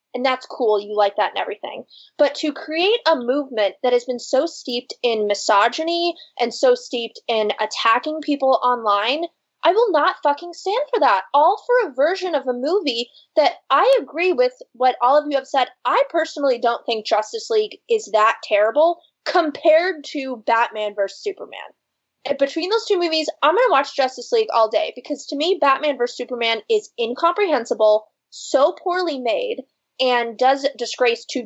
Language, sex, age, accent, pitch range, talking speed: English, female, 20-39, American, 240-360 Hz, 175 wpm